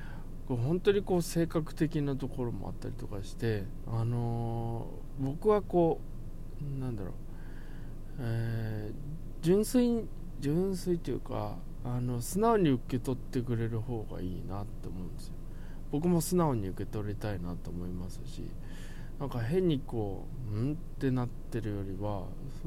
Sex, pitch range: male, 105-140 Hz